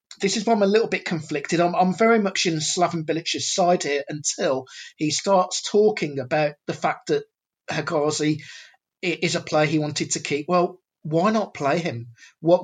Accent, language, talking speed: British, English, 185 wpm